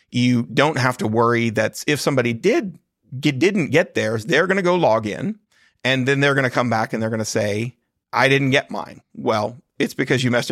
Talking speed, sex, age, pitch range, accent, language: 230 wpm, male, 40-59, 115-145 Hz, American, English